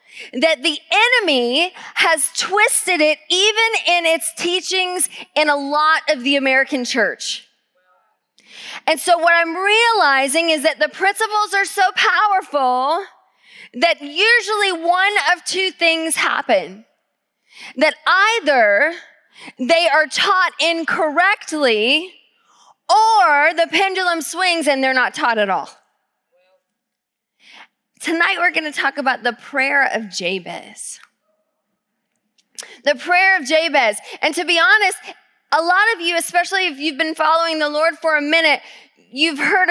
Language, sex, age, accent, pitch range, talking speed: English, female, 20-39, American, 265-355 Hz, 130 wpm